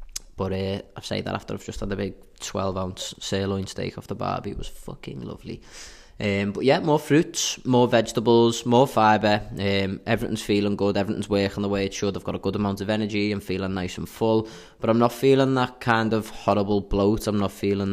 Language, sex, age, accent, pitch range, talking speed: English, male, 20-39, British, 95-110 Hz, 215 wpm